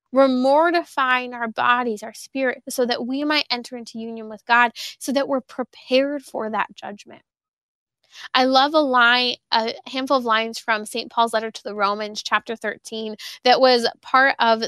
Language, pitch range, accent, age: English, 220-265 Hz, American, 20-39